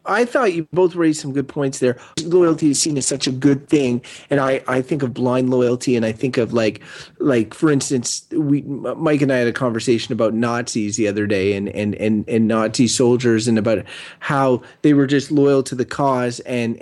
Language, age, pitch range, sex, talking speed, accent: English, 30-49, 125-160 Hz, male, 220 wpm, American